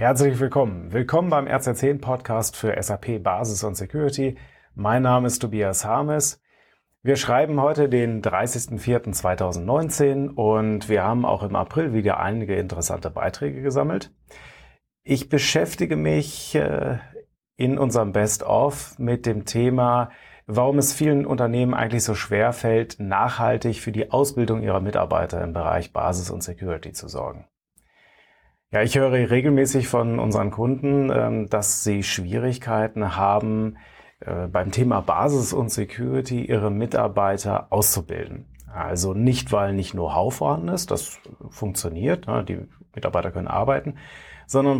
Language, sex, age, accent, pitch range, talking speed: German, male, 30-49, German, 105-130 Hz, 125 wpm